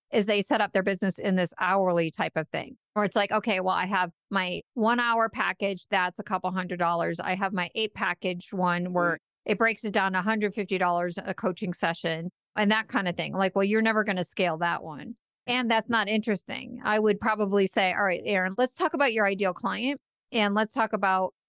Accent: American